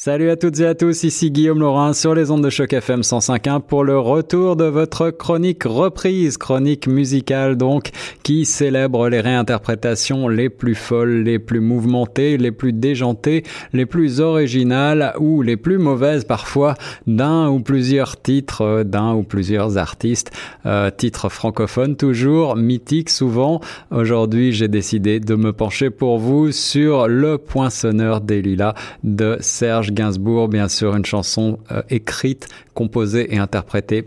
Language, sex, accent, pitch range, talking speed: French, male, French, 110-135 Hz, 155 wpm